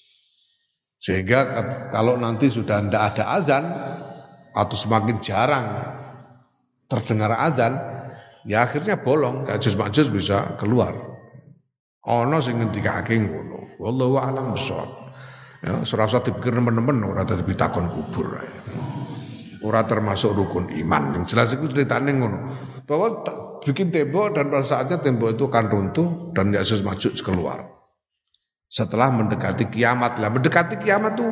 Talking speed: 130 wpm